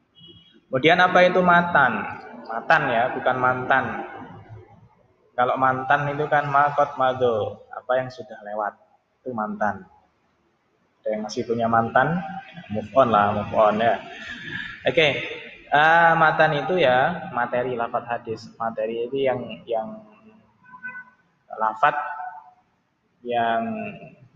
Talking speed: 115 wpm